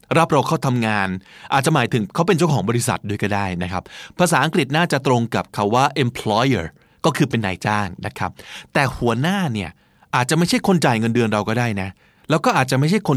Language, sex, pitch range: Thai, male, 105-140 Hz